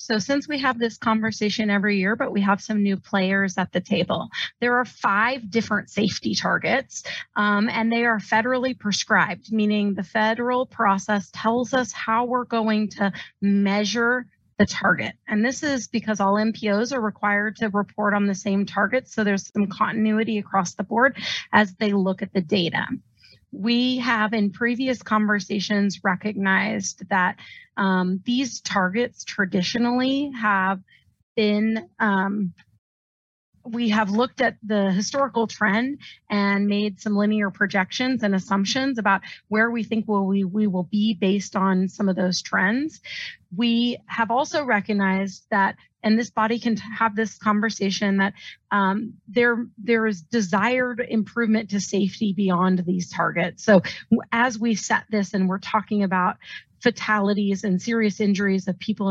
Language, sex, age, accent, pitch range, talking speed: English, female, 30-49, American, 195-230 Hz, 150 wpm